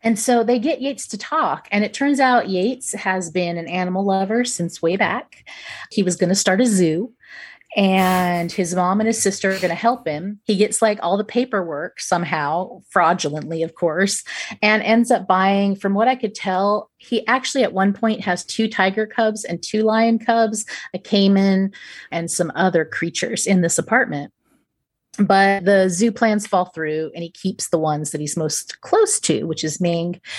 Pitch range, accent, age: 180-230 Hz, American, 30-49